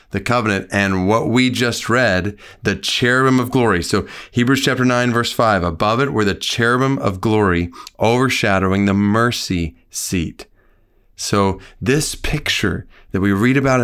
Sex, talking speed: male, 150 wpm